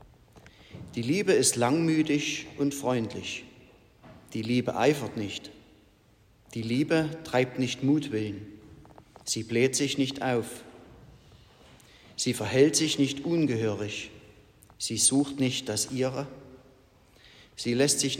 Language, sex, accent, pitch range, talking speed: German, male, German, 110-140 Hz, 110 wpm